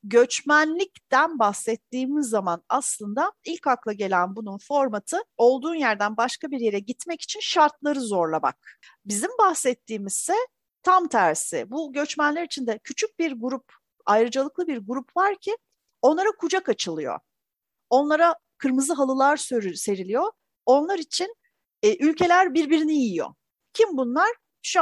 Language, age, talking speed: Turkish, 40-59, 125 wpm